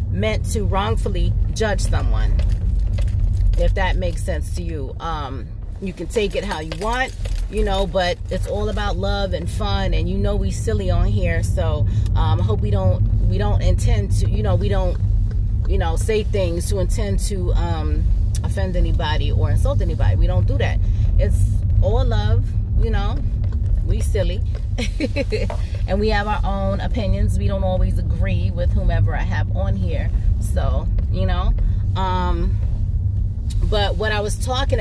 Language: English